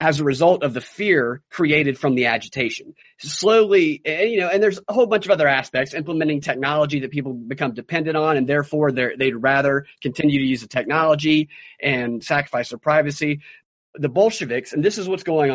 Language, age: English, 30-49